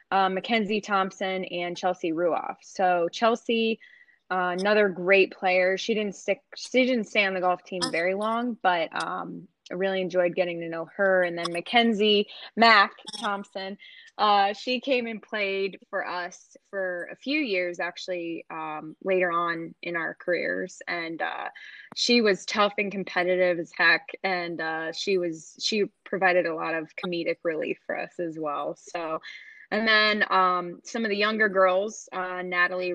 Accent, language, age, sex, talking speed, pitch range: American, English, 20-39, female, 165 wpm, 175-200 Hz